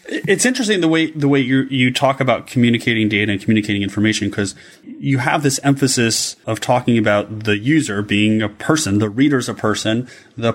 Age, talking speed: 30-49, 195 wpm